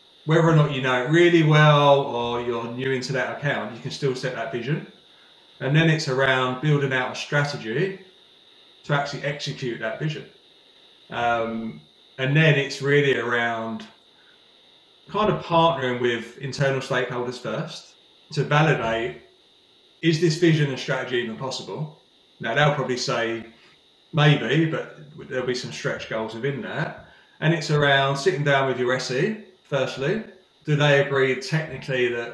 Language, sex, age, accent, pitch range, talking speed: English, male, 30-49, British, 125-150 Hz, 150 wpm